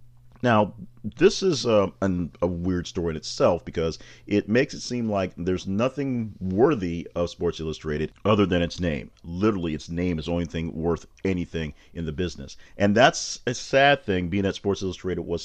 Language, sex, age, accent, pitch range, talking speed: English, male, 40-59, American, 80-100 Hz, 185 wpm